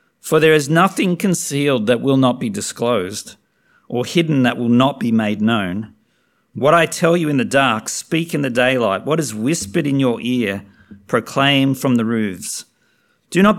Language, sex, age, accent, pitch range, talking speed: English, male, 50-69, Australian, 120-155 Hz, 180 wpm